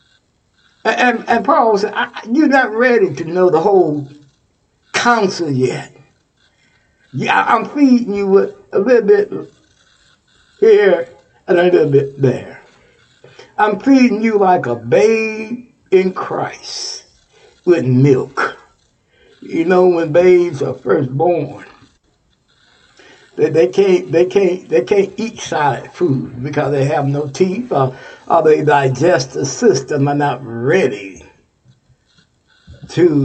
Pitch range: 145-235 Hz